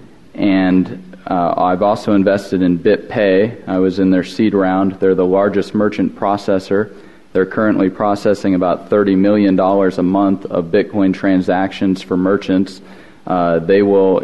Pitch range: 90-100 Hz